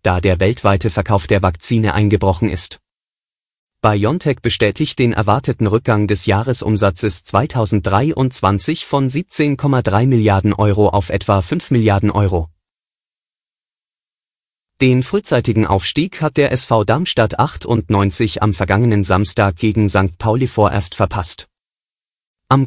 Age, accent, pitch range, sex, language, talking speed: 30-49, German, 100-130 Hz, male, German, 110 wpm